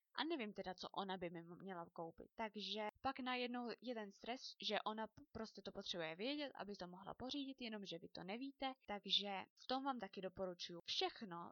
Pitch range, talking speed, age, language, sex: 195-250 Hz, 175 wpm, 20-39, Czech, female